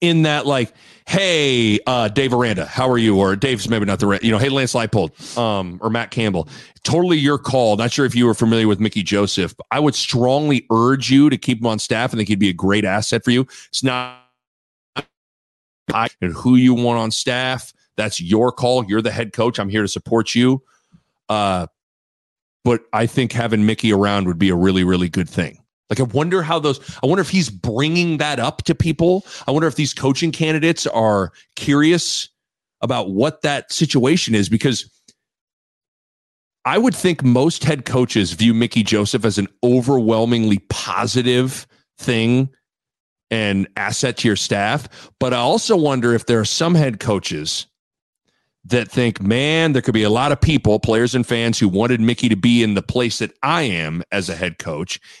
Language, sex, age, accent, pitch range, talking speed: English, male, 40-59, American, 105-135 Hz, 190 wpm